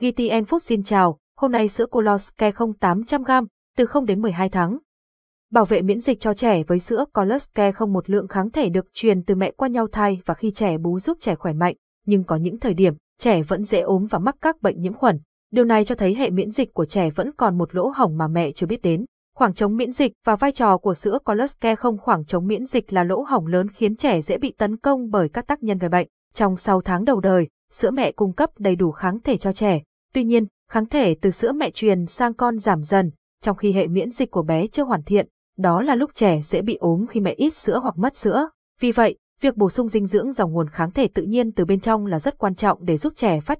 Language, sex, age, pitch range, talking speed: Vietnamese, female, 20-39, 185-245 Hz, 250 wpm